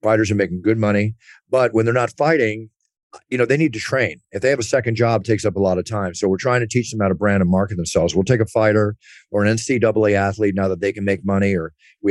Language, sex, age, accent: English, male, 40-59, American